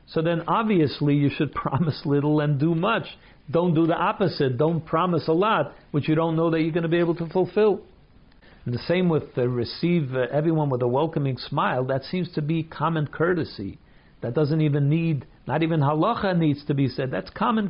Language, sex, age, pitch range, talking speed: English, male, 60-79, 135-170 Hz, 205 wpm